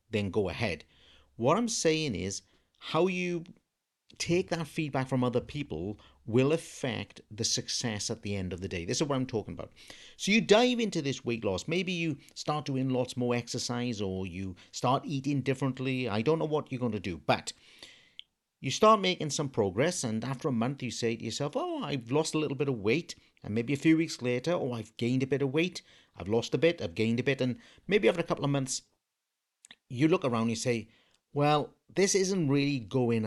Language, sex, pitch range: English, male, 115-160 Hz